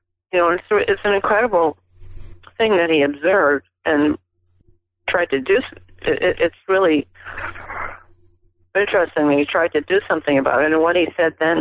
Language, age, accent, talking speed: English, 40-59, American, 155 wpm